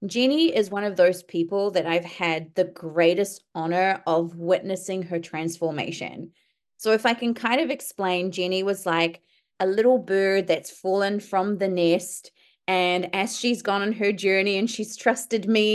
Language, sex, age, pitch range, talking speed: English, female, 30-49, 185-235 Hz, 170 wpm